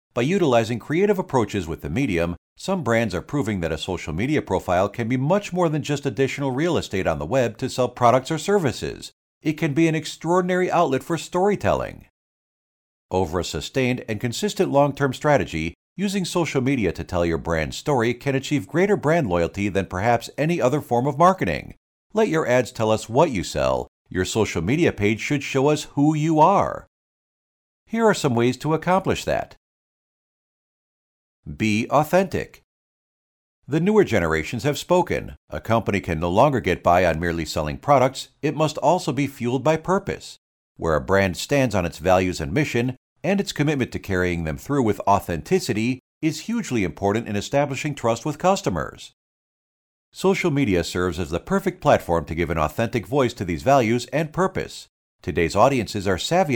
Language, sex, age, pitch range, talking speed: English, male, 50-69, 100-155 Hz, 175 wpm